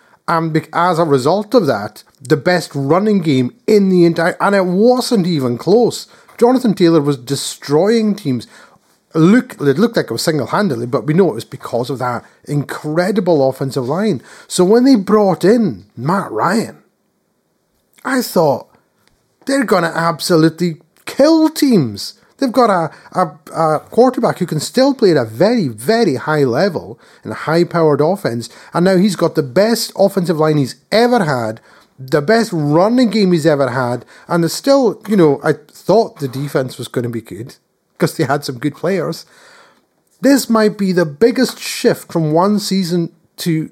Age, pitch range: 30-49, 145-210 Hz